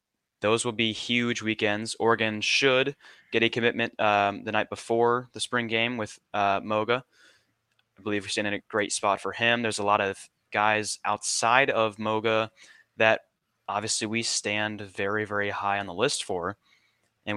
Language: English